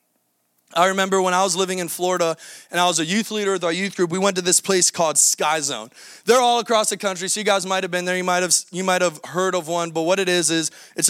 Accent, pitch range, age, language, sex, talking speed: American, 160-195 Hz, 20-39, English, male, 285 wpm